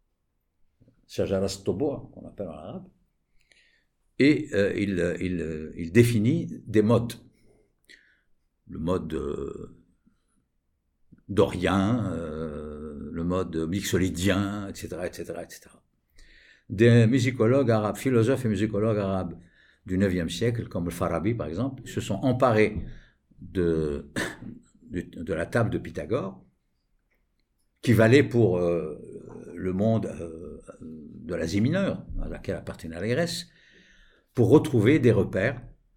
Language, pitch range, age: English, 90-125 Hz, 60-79